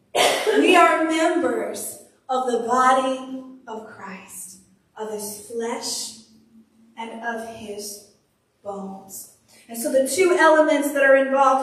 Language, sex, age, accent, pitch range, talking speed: English, female, 30-49, American, 230-280 Hz, 120 wpm